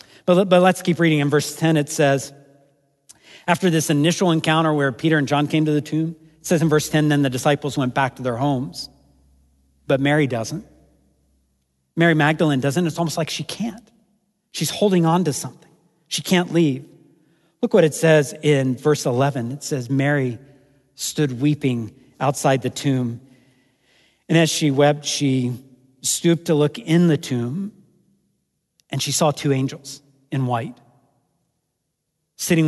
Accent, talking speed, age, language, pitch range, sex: American, 160 wpm, 50-69, English, 125-155 Hz, male